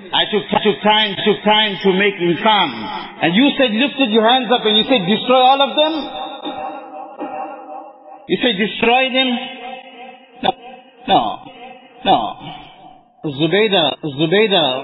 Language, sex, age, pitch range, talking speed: English, male, 50-69, 145-205 Hz, 145 wpm